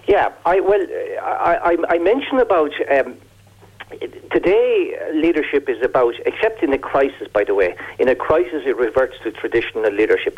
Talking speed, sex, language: 160 wpm, male, English